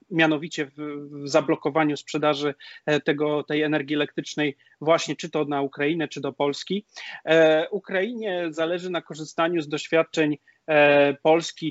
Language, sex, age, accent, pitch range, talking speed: Polish, male, 30-49, native, 150-180 Hz, 120 wpm